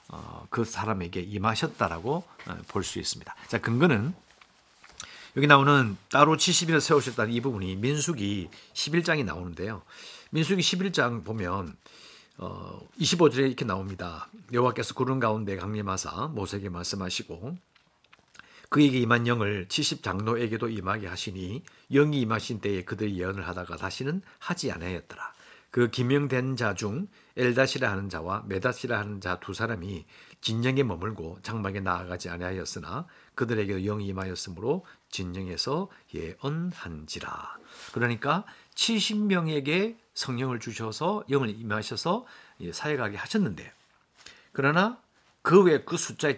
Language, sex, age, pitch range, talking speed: English, male, 50-69, 100-145 Hz, 100 wpm